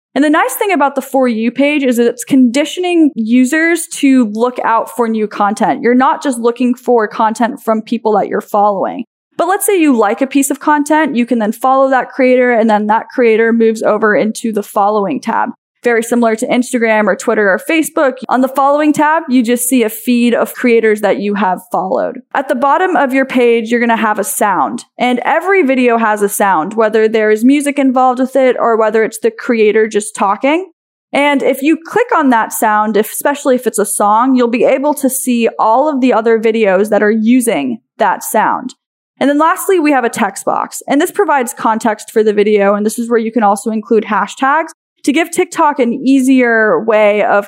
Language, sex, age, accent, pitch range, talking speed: English, female, 10-29, American, 220-280 Hz, 210 wpm